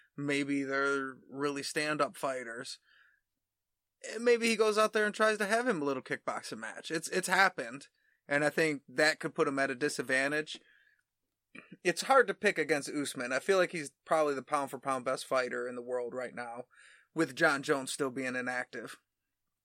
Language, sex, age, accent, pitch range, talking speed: English, male, 20-39, American, 135-170 Hz, 175 wpm